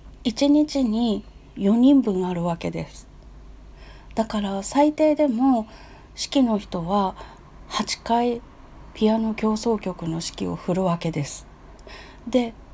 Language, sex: Japanese, female